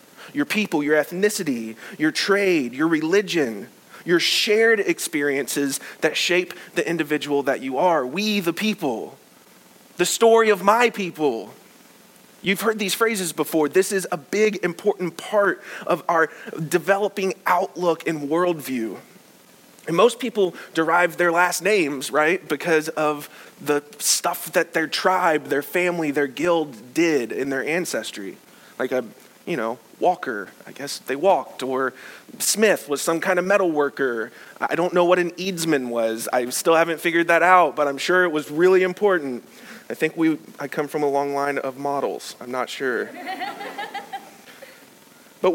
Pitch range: 150-205 Hz